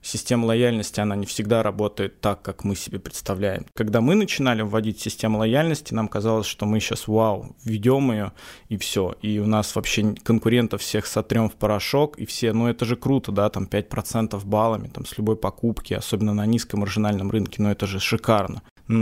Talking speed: 195 wpm